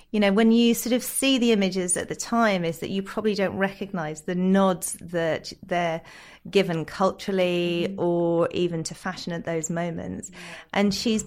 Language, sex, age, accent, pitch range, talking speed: English, female, 30-49, British, 165-195 Hz, 175 wpm